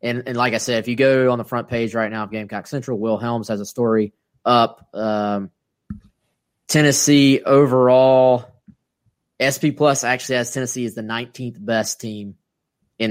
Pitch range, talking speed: 115-140 Hz, 170 wpm